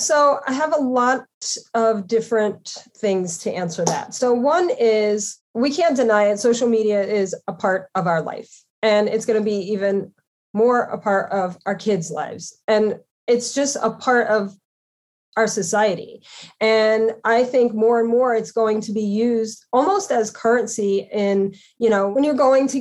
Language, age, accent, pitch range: English, 30-49, American, 210-250 Hz